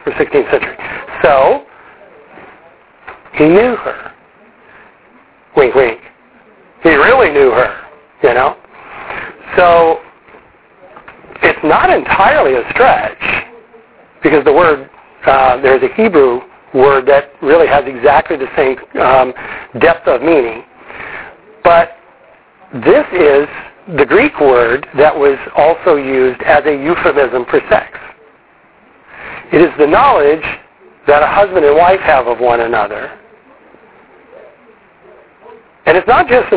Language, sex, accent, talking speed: English, male, American, 120 wpm